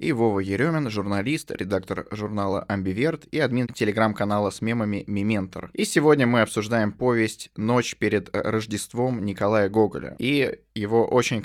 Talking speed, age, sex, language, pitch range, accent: 135 wpm, 20-39, male, Russian, 100-130 Hz, native